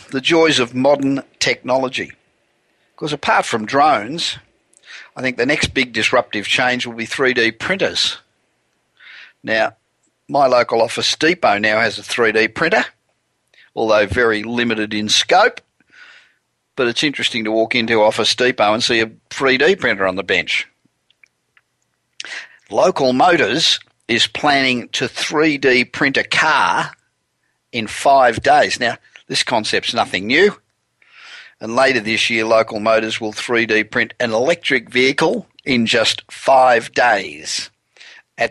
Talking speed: 130 wpm